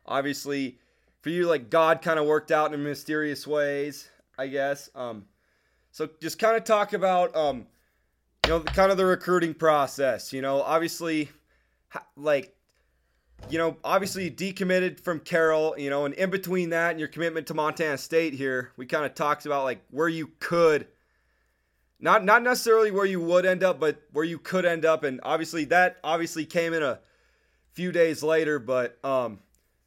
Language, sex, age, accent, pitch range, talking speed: English, male, 20-39, American, 125-170 Hz, 175 wpm